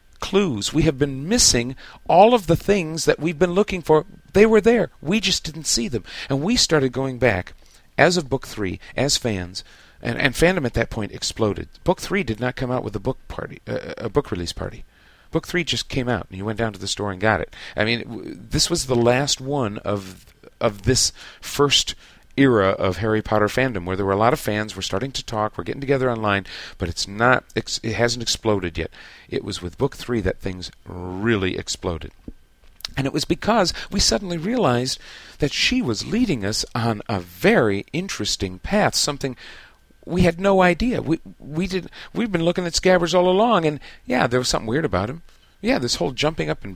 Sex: male